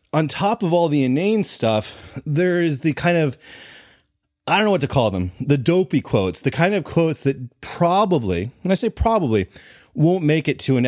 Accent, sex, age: American, male, 30-49